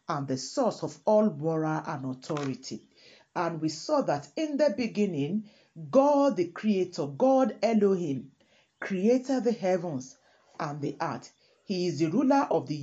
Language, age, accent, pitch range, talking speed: English, 40-59, Nigerian, 155-225 Hz, 150 wpm